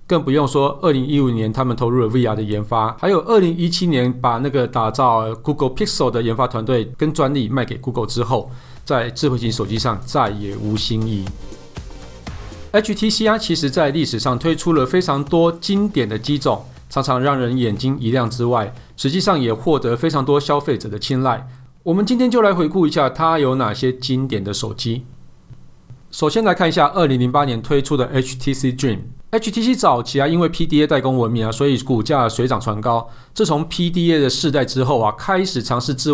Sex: male